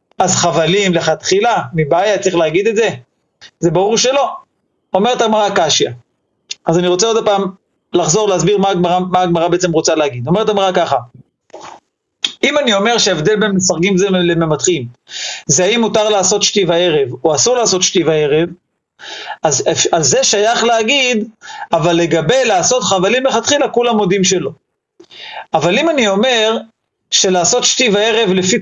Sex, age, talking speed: male, 40-59, 145 wpm